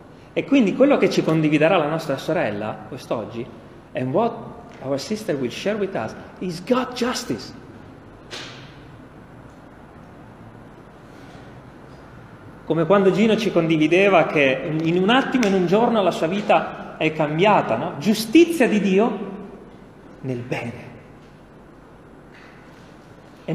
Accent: native